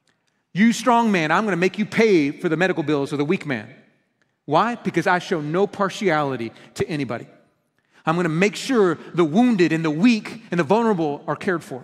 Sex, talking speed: male, 210 wpm